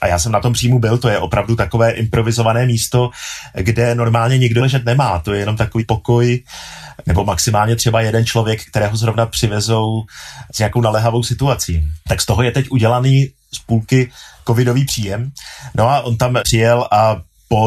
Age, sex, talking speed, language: 30-49, male, 175 wpm, Czech